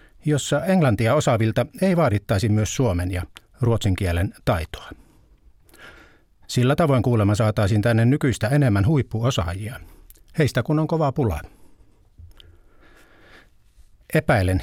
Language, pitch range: Finnish, 100-135 Hz